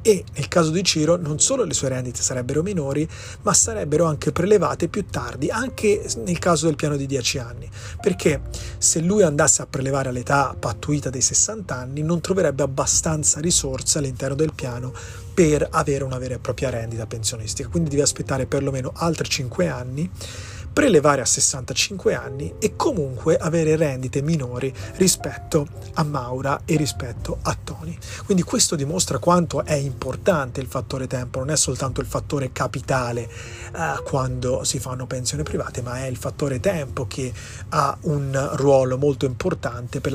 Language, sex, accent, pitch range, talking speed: Italian, male, native, 125-155 Hz, 160 wpm